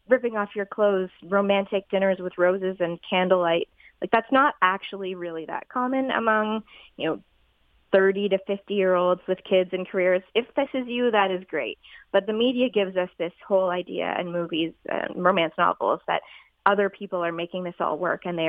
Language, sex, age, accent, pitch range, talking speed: English, female, 20-39, American, 175-200 Hz, 190 wpm